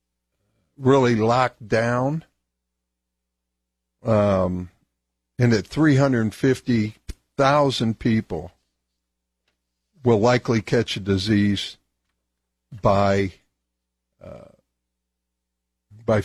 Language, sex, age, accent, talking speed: English, male, 60-79, American, 60 wpm